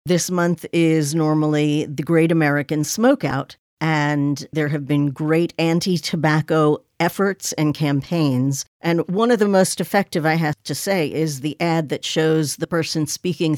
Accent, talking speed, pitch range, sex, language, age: American, 155 wpm, 135-165 Hz, female, English, 50-69